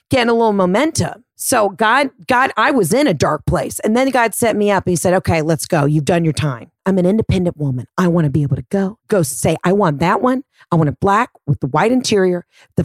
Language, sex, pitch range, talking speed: English, female, 170-235 Hz, 255 wpm